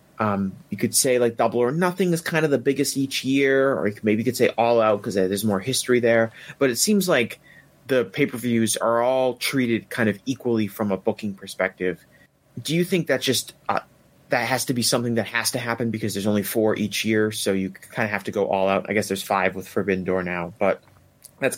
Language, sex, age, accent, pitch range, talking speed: English, male, 30-49, American, 100-125 Hz, 230 wpm